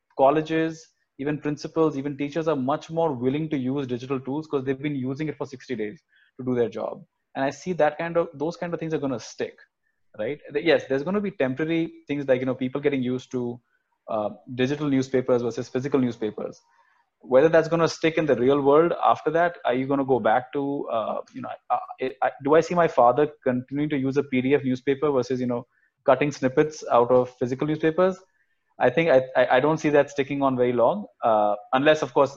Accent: Indian